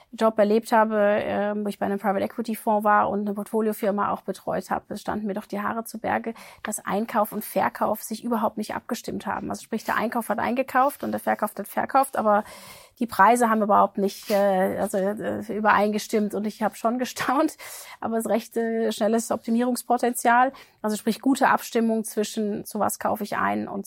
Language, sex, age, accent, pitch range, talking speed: German, female, 30-49, German, 195-225 Hz, 195 wpm